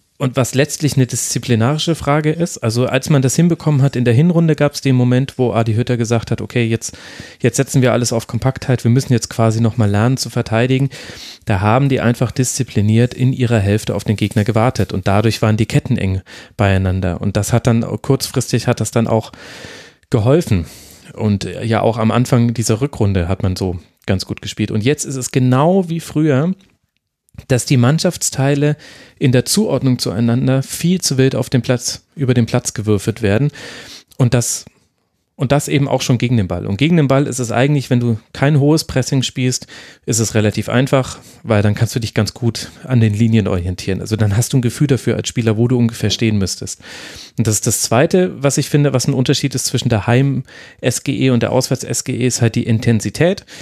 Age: 30-49